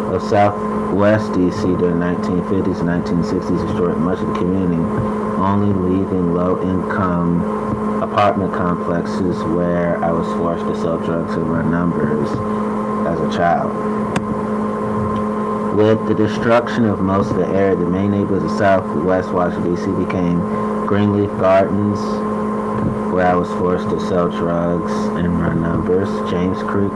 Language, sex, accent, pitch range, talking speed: English, male, American, 90-105 Hz, 135 wpm